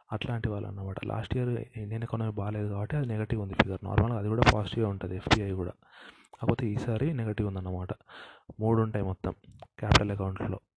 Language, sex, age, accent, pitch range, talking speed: Telugu, male, 30-49, native, 100-115 Hz, 165 wpm